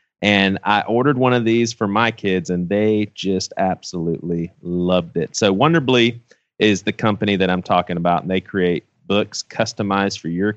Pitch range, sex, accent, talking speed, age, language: 95-115 Hz, male, American, 175 wpm, 30-49, English